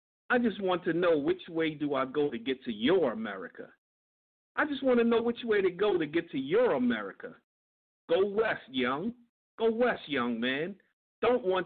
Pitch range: 140-235 Hz